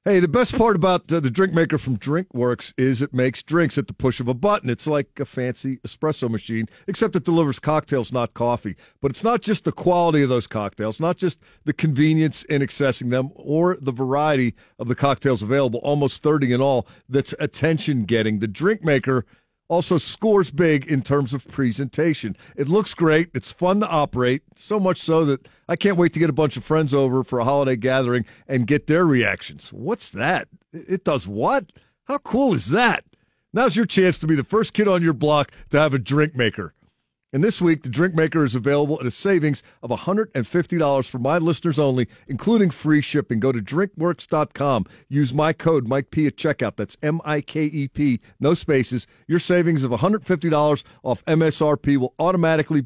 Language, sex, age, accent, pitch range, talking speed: English, male, 50-69, American, 130-165 Hz, 190 wpm